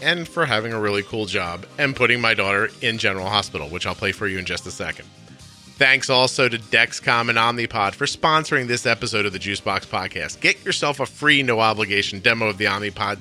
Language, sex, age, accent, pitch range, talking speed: English, male, 40-59, American, 95-115 Hz, 215 wpm